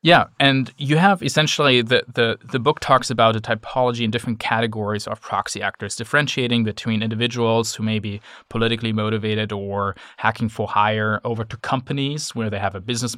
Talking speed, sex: 175 wpm, male